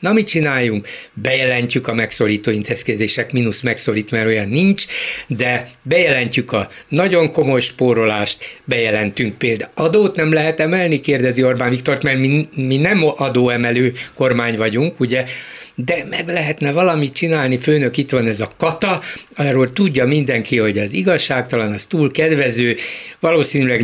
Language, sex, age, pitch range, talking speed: Hungarian, male, 60-79, 120-160 Hz, 140 wpm